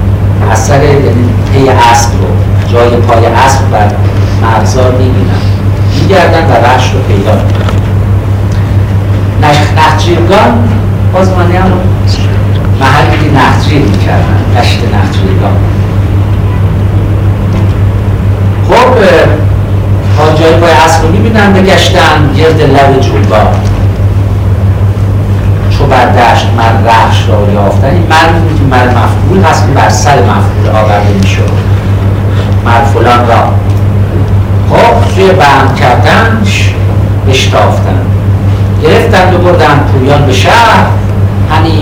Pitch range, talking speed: 100-105 Hz, 105 wpm